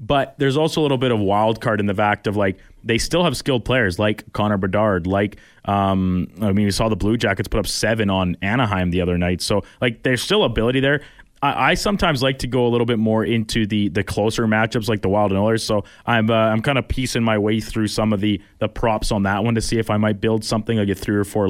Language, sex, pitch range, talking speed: English, male, 100-120 Hz, 265 wpm